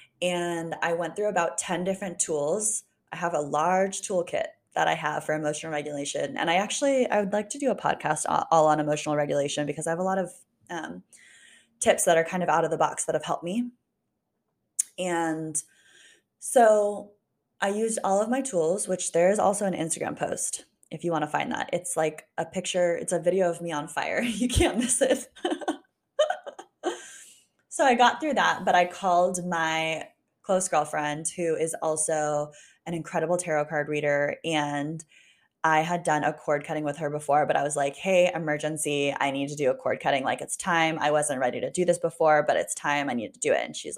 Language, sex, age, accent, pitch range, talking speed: English, female, 20-39, American, 155-195 Hz, 205 wpm